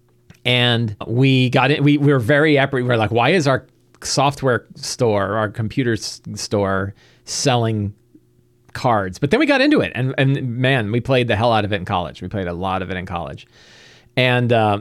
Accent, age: American, 40-59